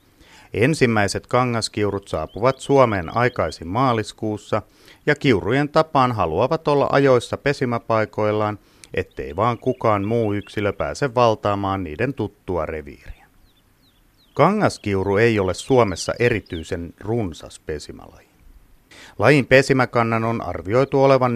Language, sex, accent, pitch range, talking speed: Finnish, male, native, 100-130 Hz, 100 wpm